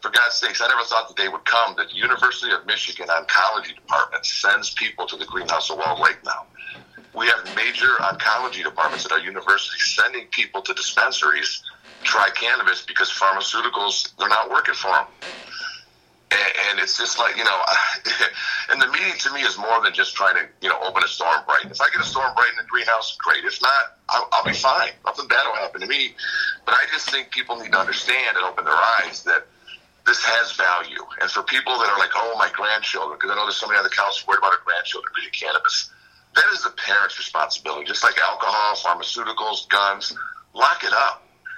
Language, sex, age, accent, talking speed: English, male, 50-69, American, 205 wpm